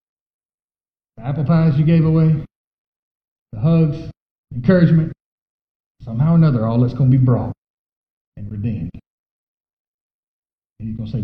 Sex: male